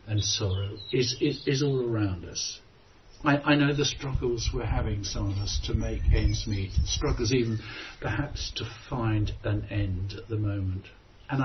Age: 60-79